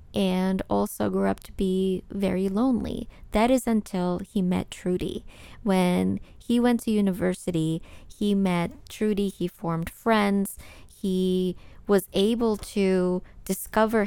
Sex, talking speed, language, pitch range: female, 130 wpm, English, 180-210 Hz